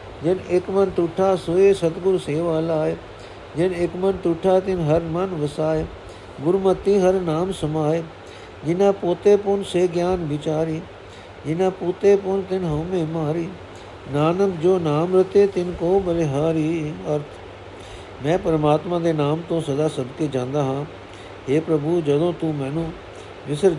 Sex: male